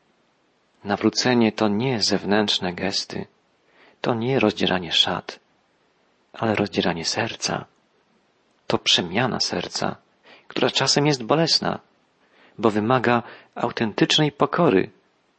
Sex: male